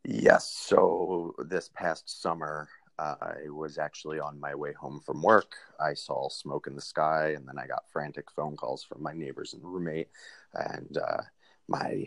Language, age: English, 30-49